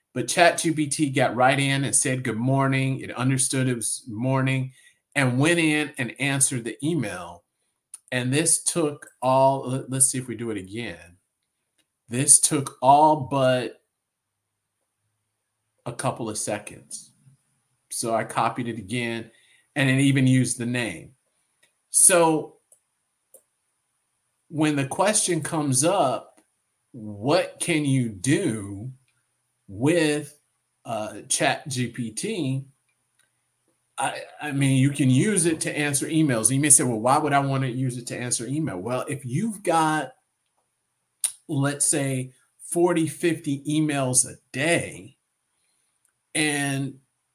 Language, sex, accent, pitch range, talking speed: English, male, American, 120-150 Hz, 130 wpm